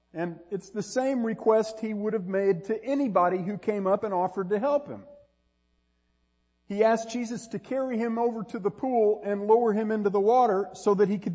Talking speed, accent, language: 205 wpm, American, English